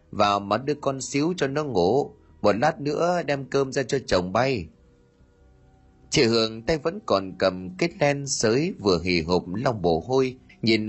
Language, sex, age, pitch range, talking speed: Vietnamese, male, 30-49, 90-145 Hz, 180 wpm